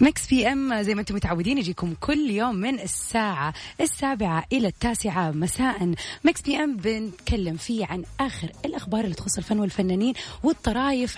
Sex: female